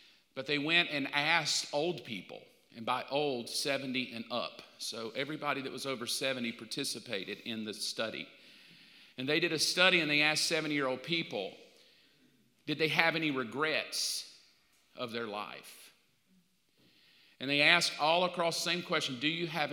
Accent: American